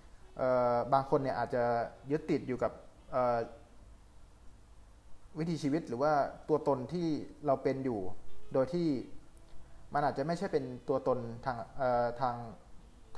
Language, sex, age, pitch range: Thai, male, 20-39, 115-140 Hz